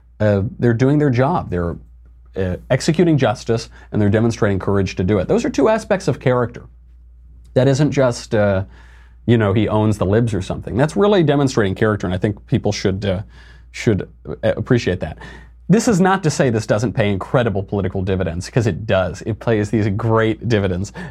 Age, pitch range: 30-49, 95-125 Hz